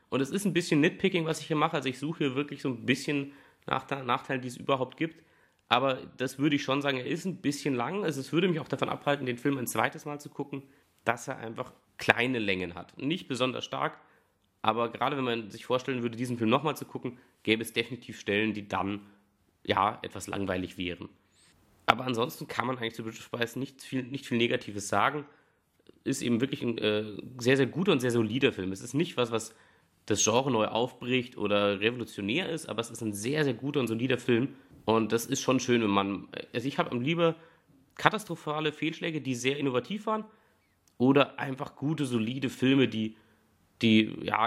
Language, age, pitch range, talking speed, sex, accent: German, 30-49, 110-140 Hz, 205 wpm, male, German